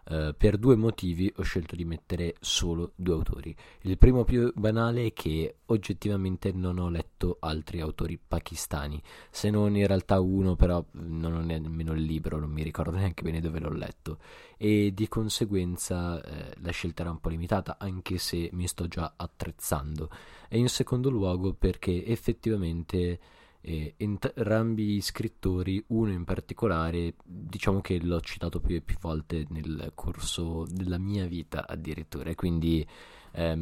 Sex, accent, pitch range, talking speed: male, native, 80-105 Hz, 160 wpm